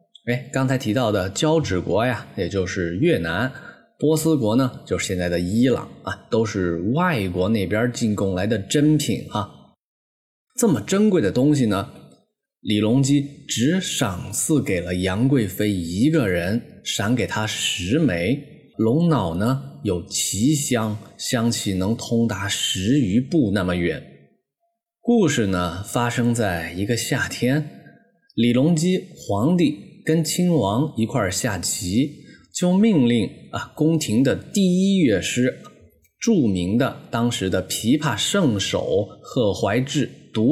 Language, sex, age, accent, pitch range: Chinese, male, 20-39, native, 100-150 Hz